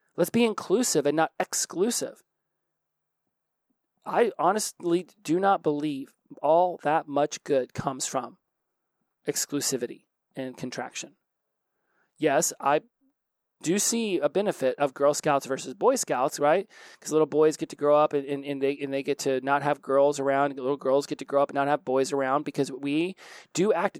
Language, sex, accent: English, male, American